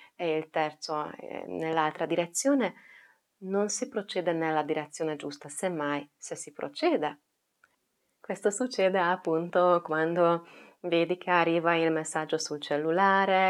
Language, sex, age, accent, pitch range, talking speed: Italian, female, 30-49, native, 160-205 Hz, 115 wpm